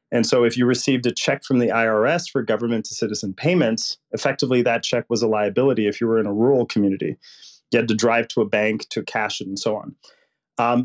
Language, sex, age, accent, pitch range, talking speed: English, male, 30-49, American, 110-130 Hz, 230 wpm